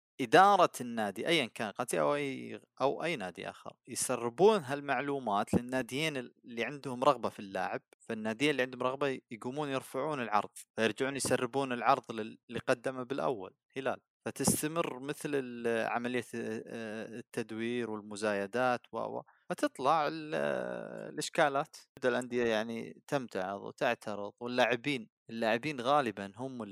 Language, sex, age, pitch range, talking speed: Arabic, male, 30-49, 110-135 Hz, 115 wpm